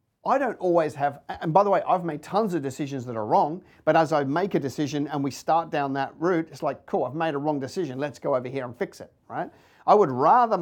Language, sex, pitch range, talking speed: English, male, 120-155 Hz, 265 wpm